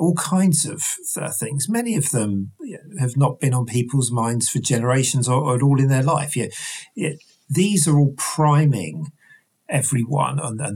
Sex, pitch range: male, 120-155 Hz